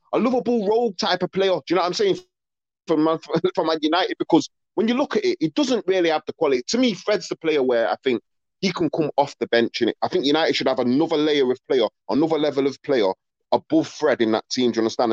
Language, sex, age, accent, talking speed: English, male, 30-49, British, 260 wpm